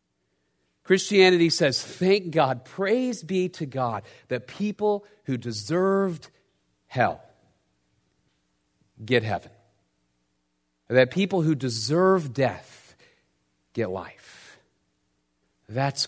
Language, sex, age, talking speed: English, male, 40-59, 85 wpm